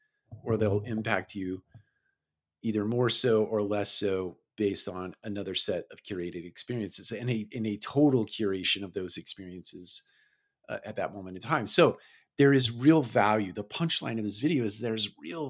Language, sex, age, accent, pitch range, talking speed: English, male, 40-59, American, 100-125 Hz, 175 wpm